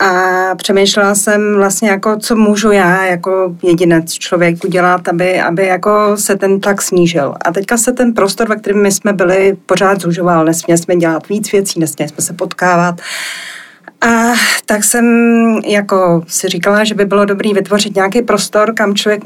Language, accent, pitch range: Czech, native, 180-215 Hz